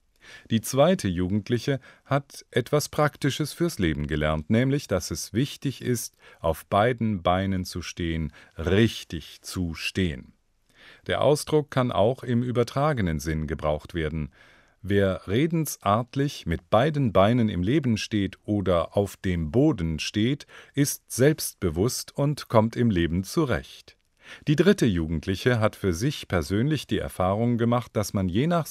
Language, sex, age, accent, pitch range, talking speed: German, male, 40-59, German, 85-125 Hz, 135 wpm